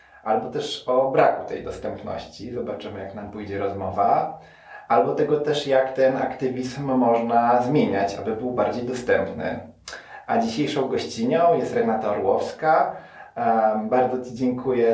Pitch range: 120-135 Hz